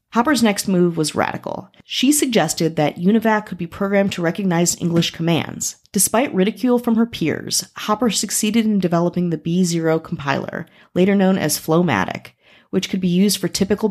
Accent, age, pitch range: American, 30-49, 160-205 Hz